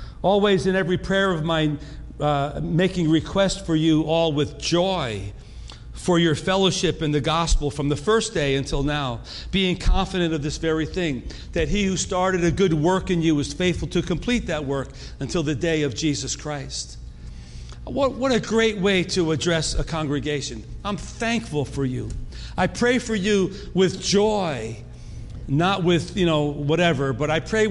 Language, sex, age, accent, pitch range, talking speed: English, male, 50-69, American, 145-190 Hz, 175 wpm